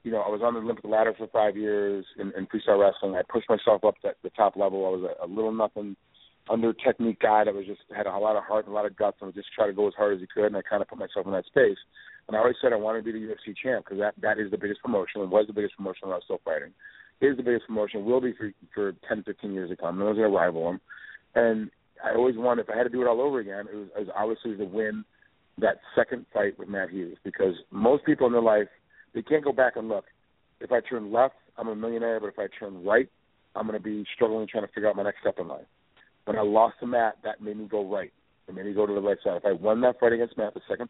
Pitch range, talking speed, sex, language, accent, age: 105-115 Hz, 300 wpm, male, English, American, 40-59